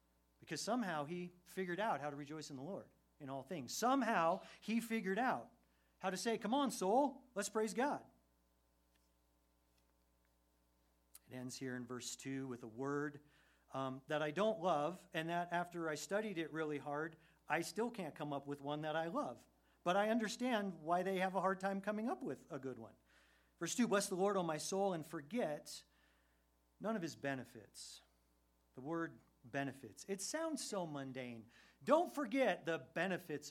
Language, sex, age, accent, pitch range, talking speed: English, male, 40-59, American, 130-195 Hz, 175 wpm